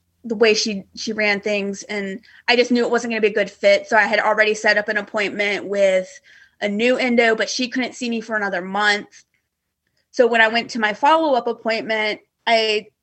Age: 20-39